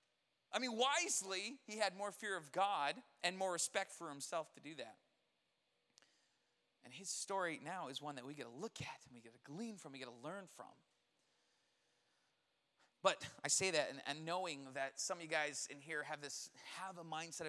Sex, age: male, 30-49